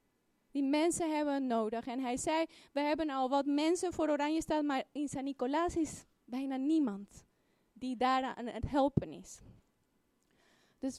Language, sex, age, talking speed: Dutch, female, 20-39, 155 wpm